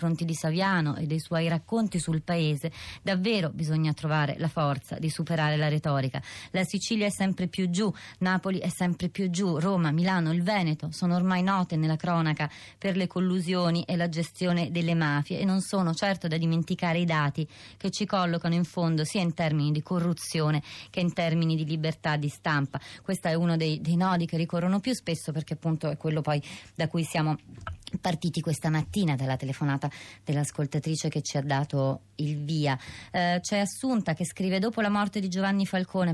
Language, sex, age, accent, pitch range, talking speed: Italian, female, 20-39, native, 155-185 Hz, 185 wpm